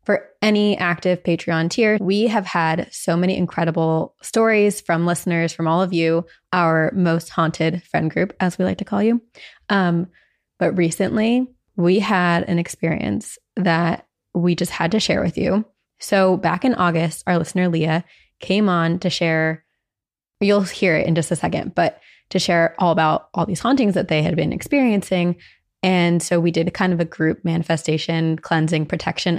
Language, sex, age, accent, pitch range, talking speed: English, female, 20-39, American, 165-195 Hz, 180 wpm